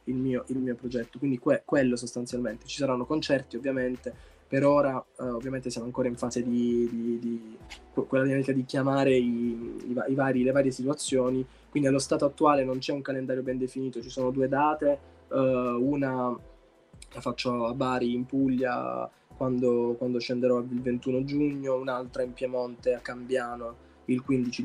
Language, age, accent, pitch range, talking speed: Italian, 20-39, native, 125-135 Hz, 170 wpm